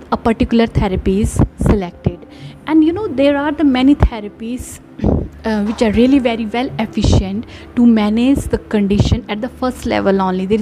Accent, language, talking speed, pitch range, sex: Indian, English, 160 wpm, 210-255 Hz, female